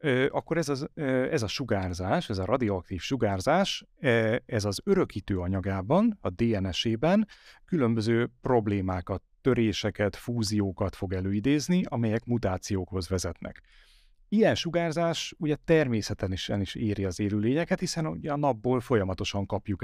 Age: 30-49